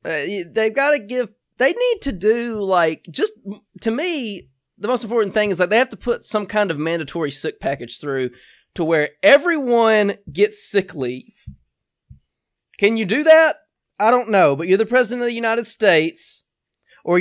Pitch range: 145-230 Hz